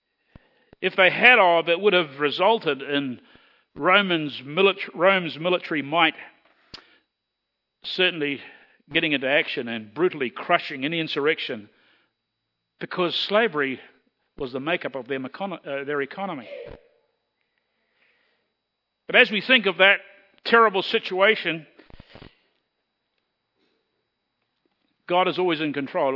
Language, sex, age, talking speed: English, male, 50-69, 95 wpm